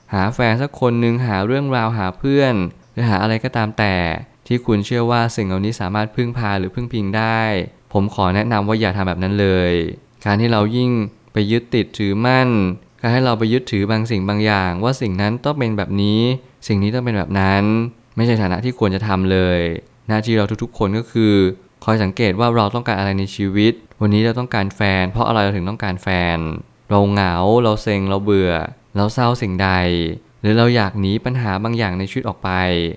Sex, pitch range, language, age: male, 100-115 Hz, Thai, 20-39